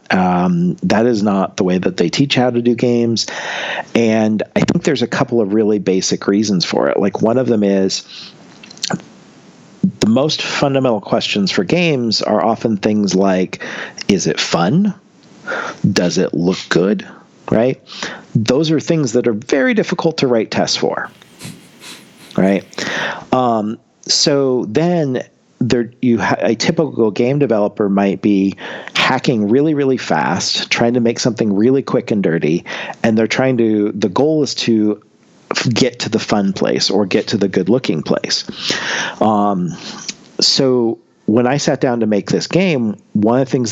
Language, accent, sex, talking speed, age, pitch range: English, American, male, 160 wpm, 40-59, 105-140 Hz